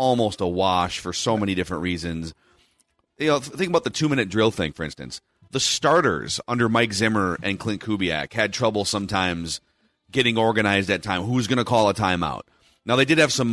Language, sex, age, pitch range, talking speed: English, male, 30-49, 90-115 Hz, 195 wpm